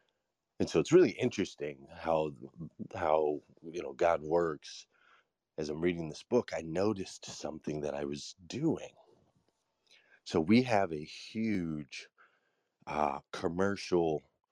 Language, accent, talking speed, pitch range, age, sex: English, American, 125 wpm, 75-90 Hz, 30-49, male